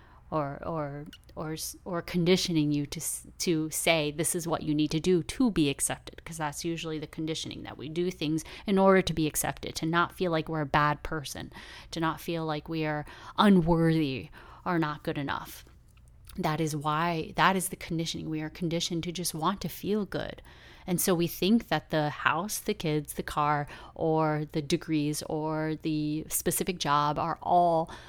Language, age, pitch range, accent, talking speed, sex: English, 30-49, 150-175 Hz, American, 190 wpm, female